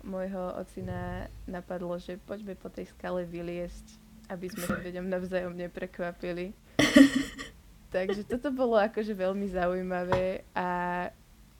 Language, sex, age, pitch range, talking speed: Slovak, female, 20-39, 175-185 Hz, 115 wpm